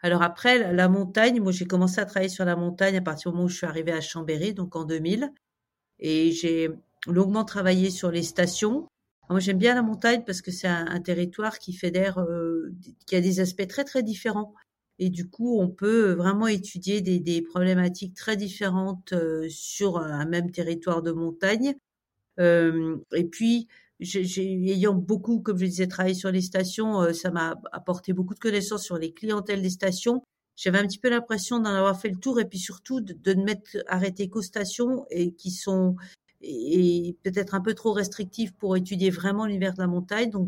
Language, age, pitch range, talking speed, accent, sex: French, 50-69, 180-210 Hz, 205 wpm, French, female